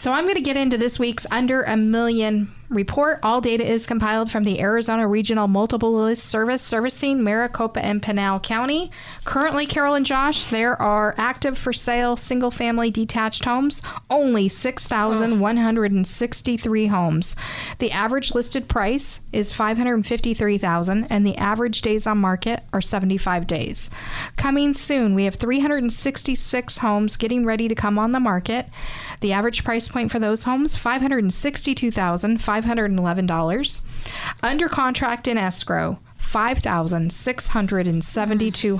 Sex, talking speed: female, 130 wpm